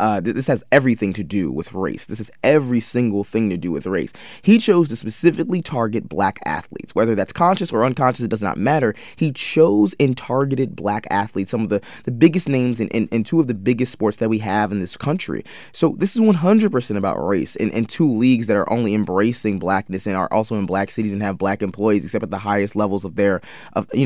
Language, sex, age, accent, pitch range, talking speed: English, male, 20-39, American, 110-155 Hz, 235 wpm